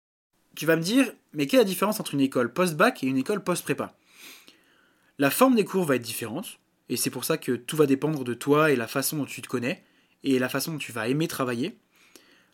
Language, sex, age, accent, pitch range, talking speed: French, male, 20-39, French, 130-165 Hz, 240 wpm